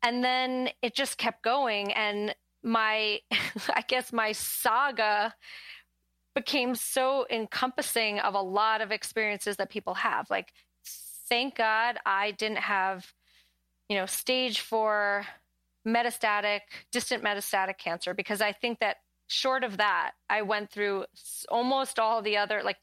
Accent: American